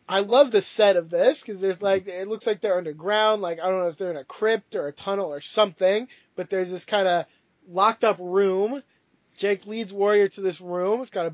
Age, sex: 20-39, male